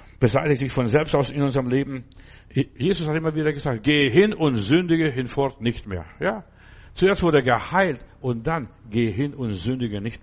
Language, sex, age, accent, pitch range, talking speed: German, male, 60-79, German, 120-160 Hz, 190 wpm